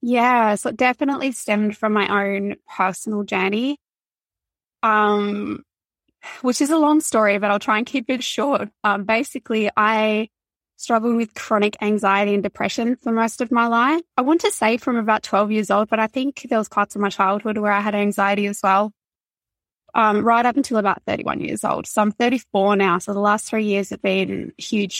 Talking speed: 195 wpm